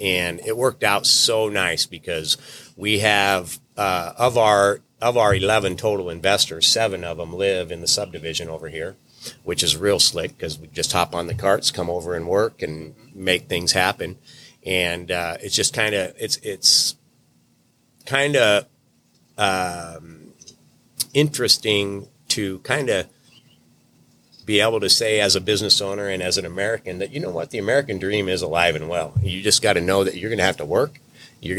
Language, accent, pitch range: English, American, 80-100 Hz